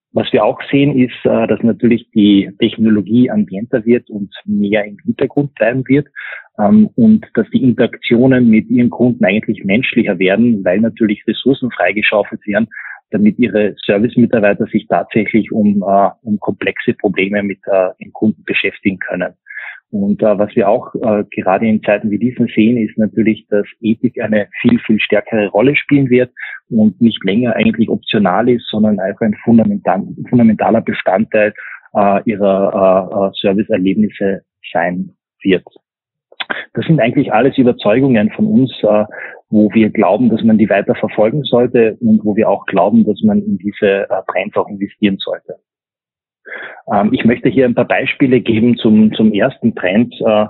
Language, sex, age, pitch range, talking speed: German, male, 20-39, 105-125 Hz, 155 wpm